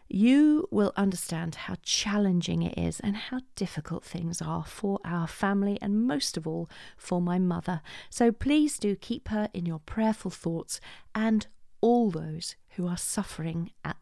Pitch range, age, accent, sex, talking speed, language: 170-230 Hz, 40-59, British, female, 165 wpm, English